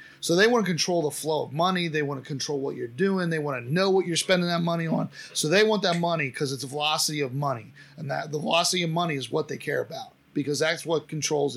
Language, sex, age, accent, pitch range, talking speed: English, male, 30-49, American, 145-190 Hz, 265 wpm